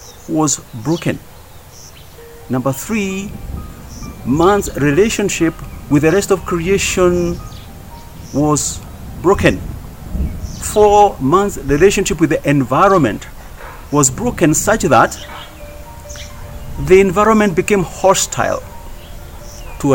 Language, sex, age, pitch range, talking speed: English, male, 50-69, 100-170 Hz, 85 wpm